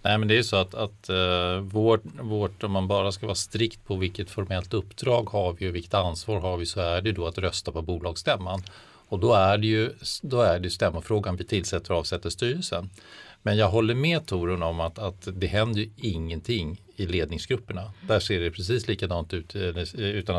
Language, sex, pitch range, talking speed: Swedish, male, 90-110 Hz, 205 wpm